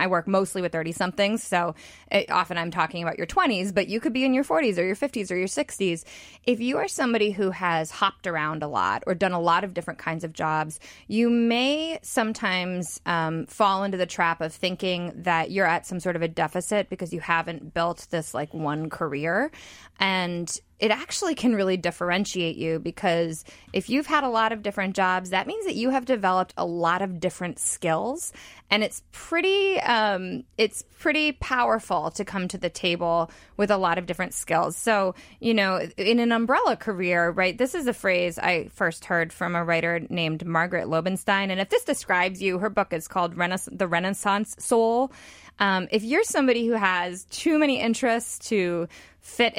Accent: American